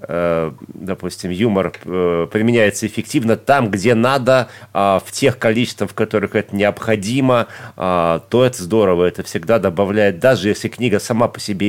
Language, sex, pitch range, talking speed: Russian, male, 95-115 Hz, 135 wpm